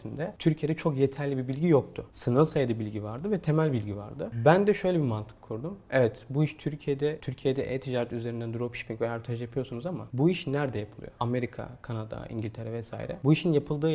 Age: 30-49